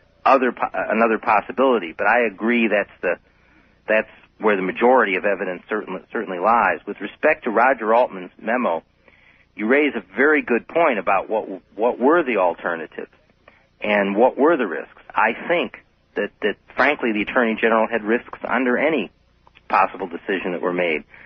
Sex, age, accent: male, 40-59, American